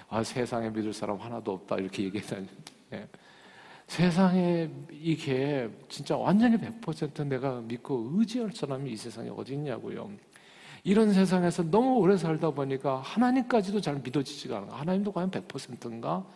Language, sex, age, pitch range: Korean, male, 50-69, 135-185 Hz